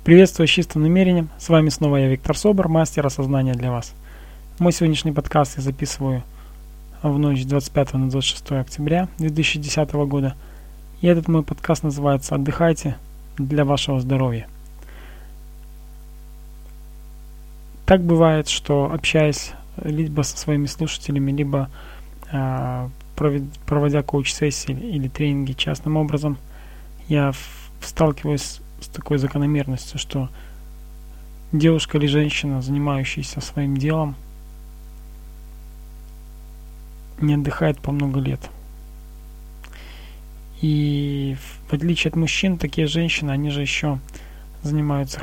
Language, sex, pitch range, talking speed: Russian, male, 120-150 Hz, 110 wpm